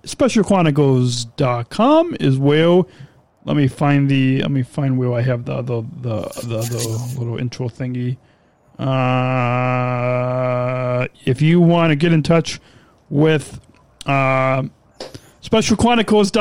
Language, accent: English, American